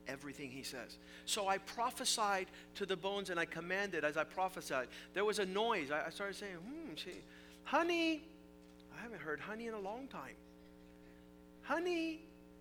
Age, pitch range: 50-69, 125-190 Hz